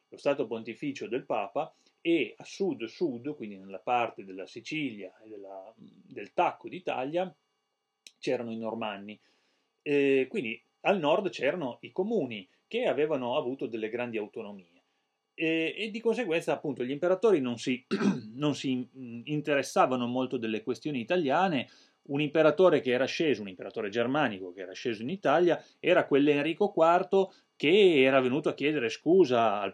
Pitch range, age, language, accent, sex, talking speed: 115-180 Hz, 30-49, Italian, native, male, 145 wpm